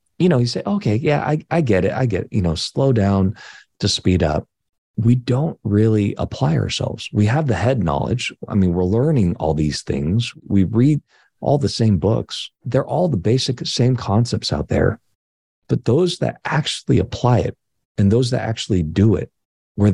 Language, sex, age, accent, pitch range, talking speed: English, male, 40-59, American, 100-130 Hz, 190 wpm